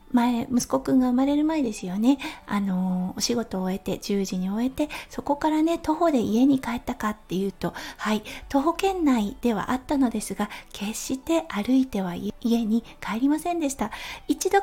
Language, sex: Japanese, female